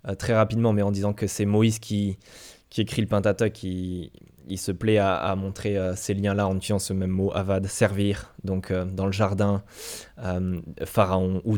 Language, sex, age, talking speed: French, male, 20-39, 225 wpm